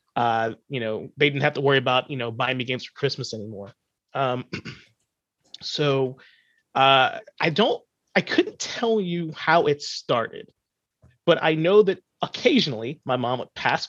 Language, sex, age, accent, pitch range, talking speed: English, male, 30-49, American, 125-175 Hz, 165 wpm